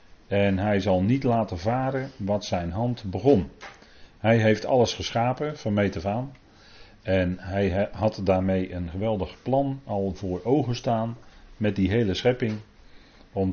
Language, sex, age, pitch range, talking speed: Dutch, male, 40-59, 95-115 Hz, 140 wpm